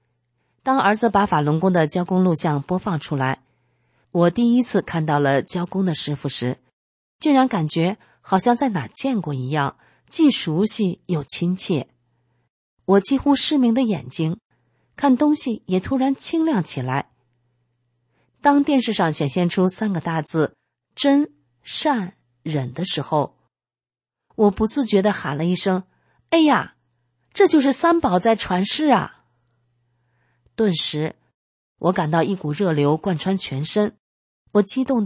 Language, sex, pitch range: Chinese, female, 140-215 Hz